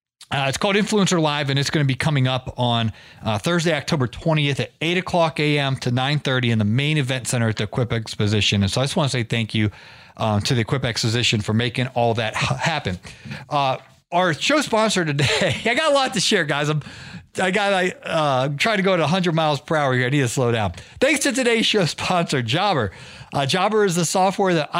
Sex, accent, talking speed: male, American, 225 wpm